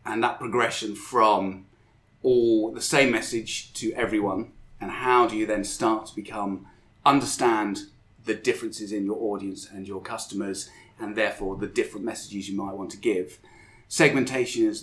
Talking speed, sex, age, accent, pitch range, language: 160 wpm, male, 30-49, British, 105-135 Hz, English